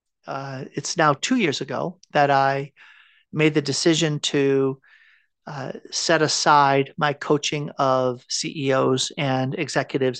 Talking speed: 125 wpm